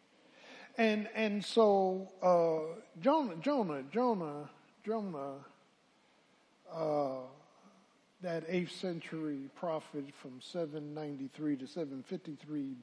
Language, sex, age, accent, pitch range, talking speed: English, male, 50-69, American, 145-210 Hz, 90 wpm